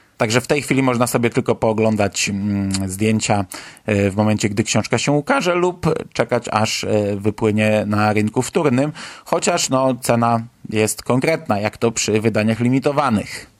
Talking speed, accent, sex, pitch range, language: 140 wpm, native, male, 110-130 Hz, Polish